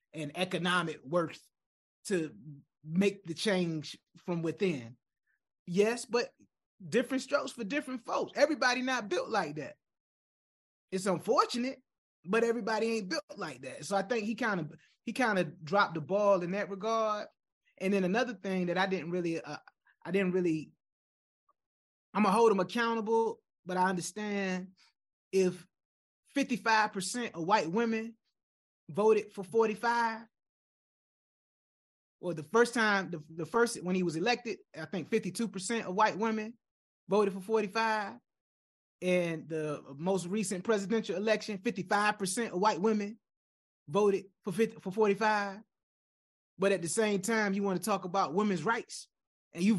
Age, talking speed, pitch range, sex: 20-39, 150 wpm, 180-225 Hz, male